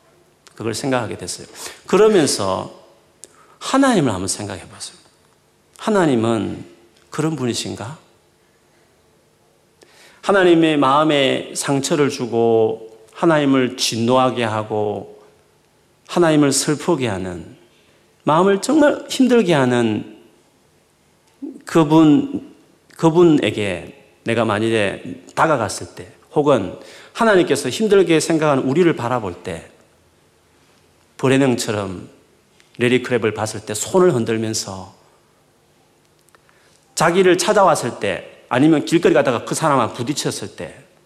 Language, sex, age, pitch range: Korean, male, 40-59, 110-165 Hz